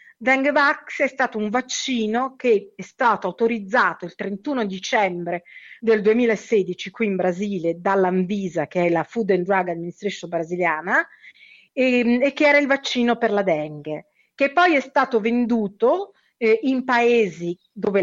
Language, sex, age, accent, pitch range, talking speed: Italian, female, 40-59, native, 180-250 Hz, 145 wpm